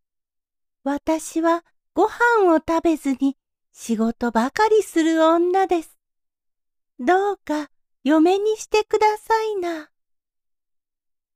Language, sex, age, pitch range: Japanese, female, 40-59, 235-360 Hz